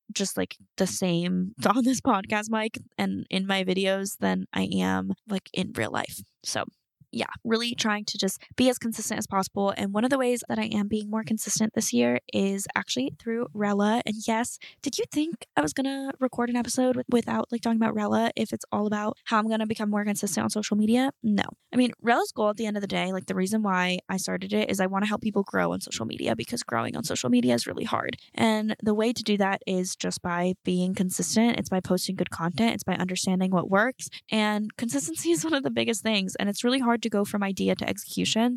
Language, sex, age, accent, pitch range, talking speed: English, female, 10-29, American, 190-235 Hz, 240 wpm